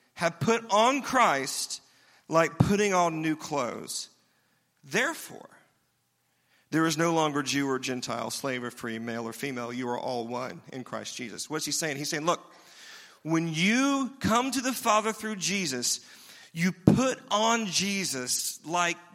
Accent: American